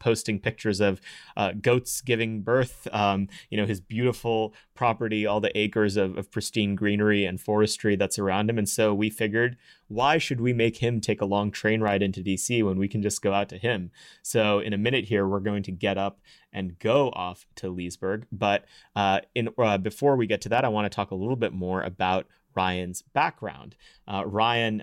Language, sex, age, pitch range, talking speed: English, male, 30-49, 95-110 Hz, 210 wpm